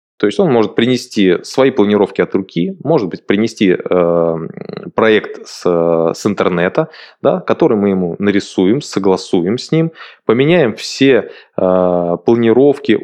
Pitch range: 90-120 Hz